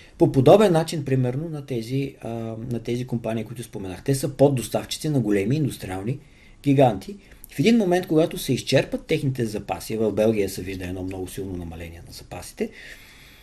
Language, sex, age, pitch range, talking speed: Bulgarian, male, 40-59, 110-150 Hz, 160 wpm